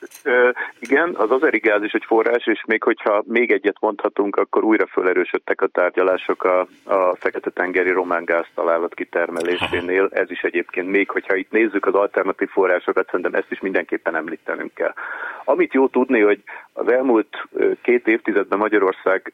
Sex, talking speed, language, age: male, 155 wpm, Hungarian, 40-59